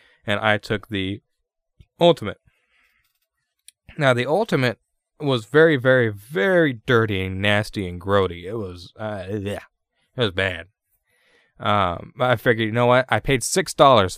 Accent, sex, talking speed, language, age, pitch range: American, male, 150 wpm, English, 20-39, 95-130 Hz